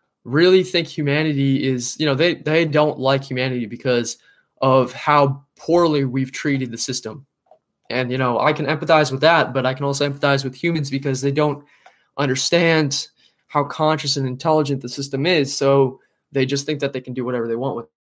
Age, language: 20-39, English